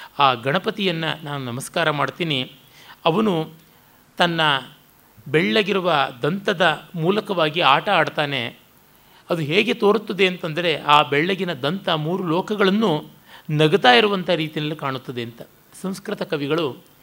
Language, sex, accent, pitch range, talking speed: Kannada, male, native, 140-185 Hz, 100 wpm